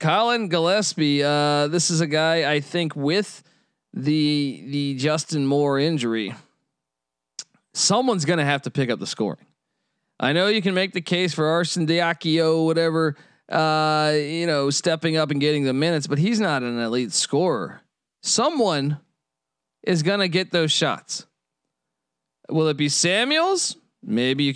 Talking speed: 155 wpm